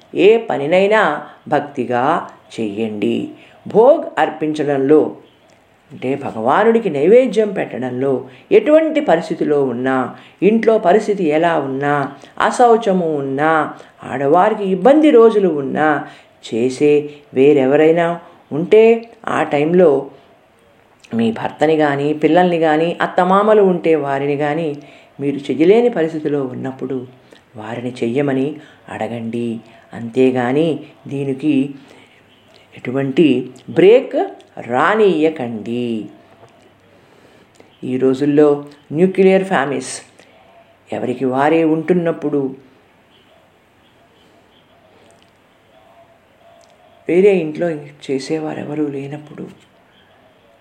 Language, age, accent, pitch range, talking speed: Telugu, 50-69, native, 130-180 Hz, 70 wpm